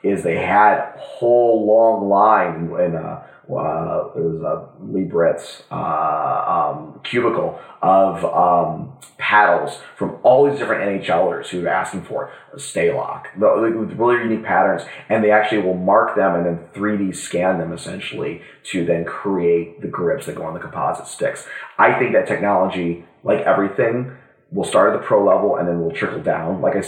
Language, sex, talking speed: English, male, 180 wpm